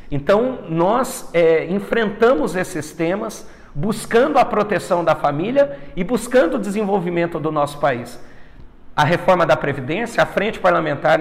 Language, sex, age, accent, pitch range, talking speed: Portuguese, male, 50-69, Brazilian, 155-230 Hz, 130 wpm